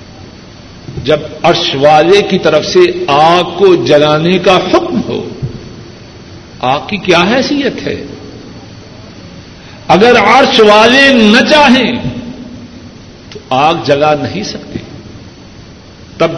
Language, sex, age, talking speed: Urdu, male, 60-79, 105 wpm